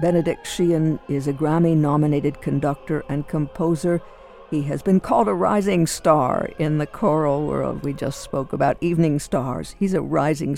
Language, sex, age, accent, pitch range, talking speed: English, female, 60-79, American, 145-170 Hz, 160 wpm